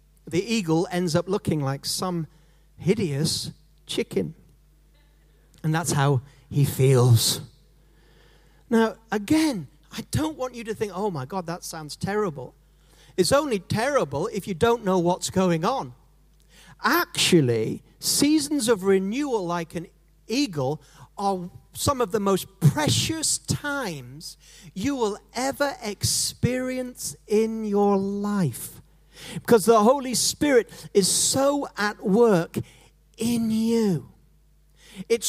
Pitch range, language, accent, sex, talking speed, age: 155-220 Hz, English, British, male, 120 wpm, 40-59